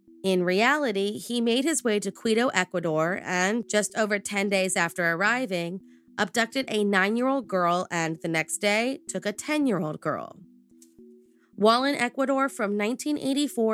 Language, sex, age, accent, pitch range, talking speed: English, female, 30-49, American, 180-240 Hz, 150 wpm